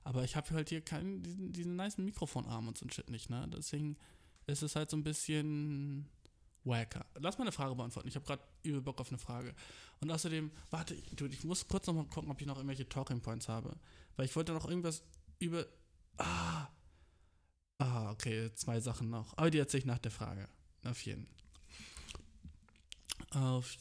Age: 20-39